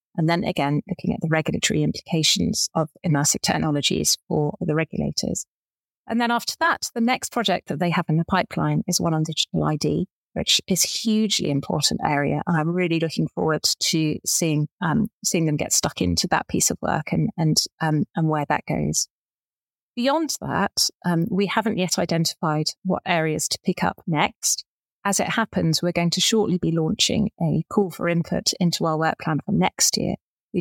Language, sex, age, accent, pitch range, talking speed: English, female, 30-49, British, 155-185 Hz, 185 wpm